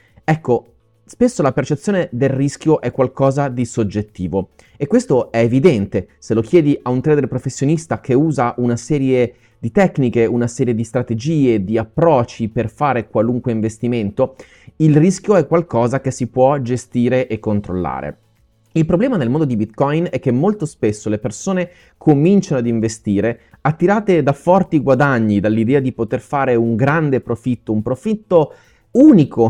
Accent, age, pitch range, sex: native, 30-49, 110-155 Hz, male